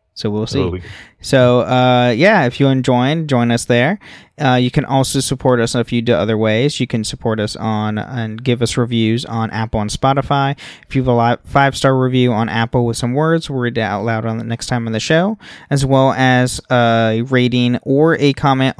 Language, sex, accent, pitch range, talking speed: English, male, American, 115-140 Hz, 225 wpm